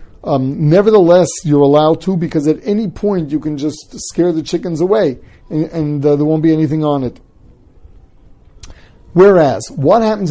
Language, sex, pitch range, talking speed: English, male, 130-175 Hz, 165 wpm